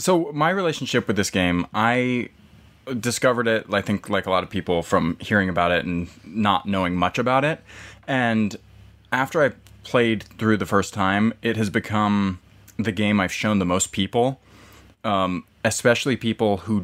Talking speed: 170 wpm